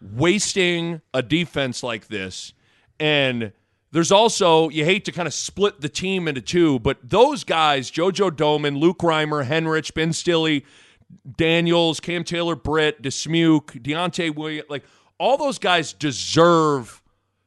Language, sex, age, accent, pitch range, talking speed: English, male, 40-59, American, 125-170 Hz, 135 wpm